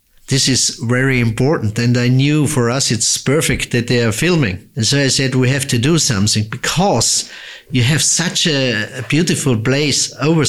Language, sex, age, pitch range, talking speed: English, male, 50-69, 125-150 Hz, 185 wpm